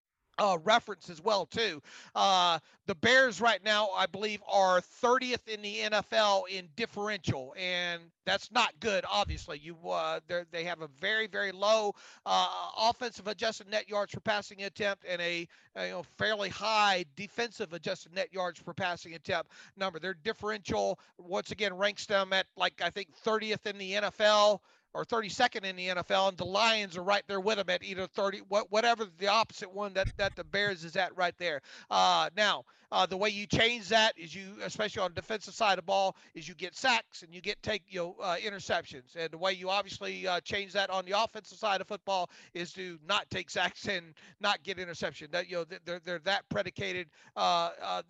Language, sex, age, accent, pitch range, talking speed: English, male, 40-59, American, 180-215 Hz, 195 wpm